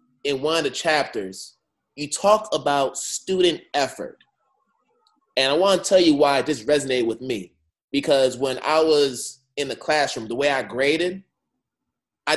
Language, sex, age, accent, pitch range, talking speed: English, male, 20-39, American, 125-165 Hz, 160 wpm